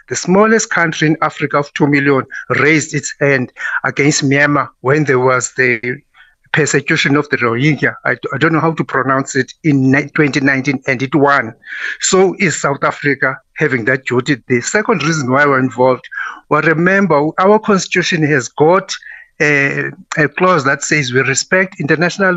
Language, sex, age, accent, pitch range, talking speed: English, male, 60-79, South African, 140-175 Hz, 165 wpm